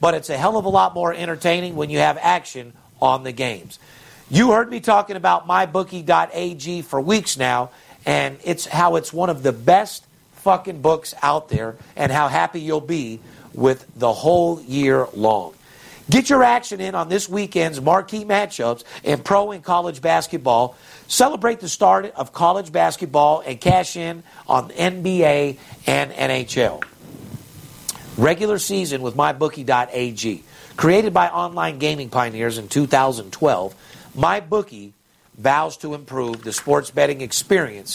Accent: American